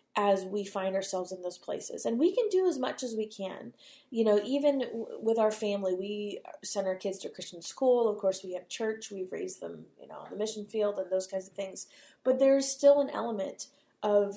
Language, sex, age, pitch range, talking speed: English, female, 20-39, 195-230 Hz, 225 wpm